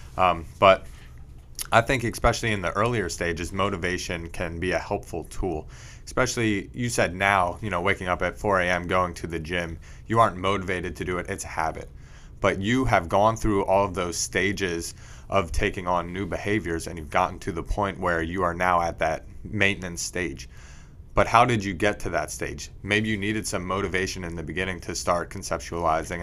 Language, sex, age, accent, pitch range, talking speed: English, male, 30-49, American, 85-105 Hz, 195 wpm